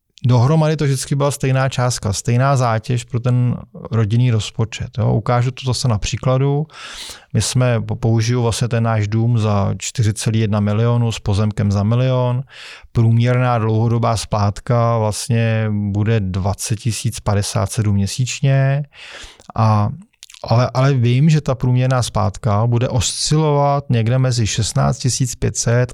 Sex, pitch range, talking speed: male, 110-130 Hz, 125 wpm